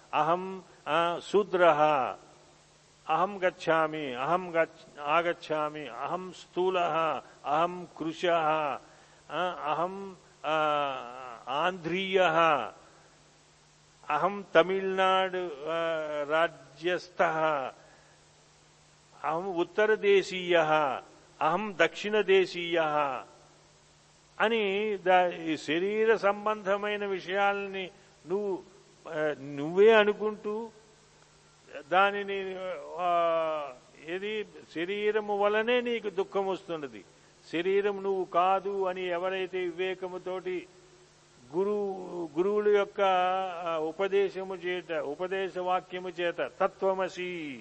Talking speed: 55 wpm